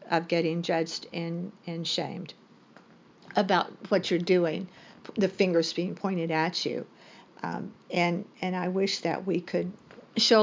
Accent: American